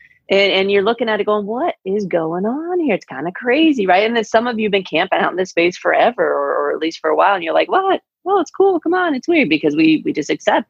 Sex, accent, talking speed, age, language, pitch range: female, American, 295 wpm, 30-49, English, 160-240 Hz